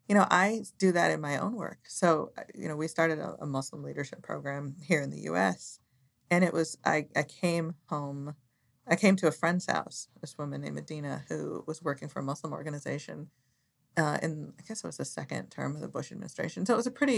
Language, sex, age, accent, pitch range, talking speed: English, female, 40-59, American, 150-185 Hz, 225 wpm